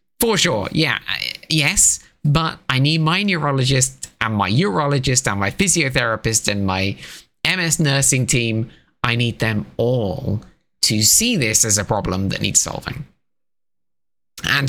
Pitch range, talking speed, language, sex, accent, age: 105-150 Hz, 140 wpm, English, male, British, 20-39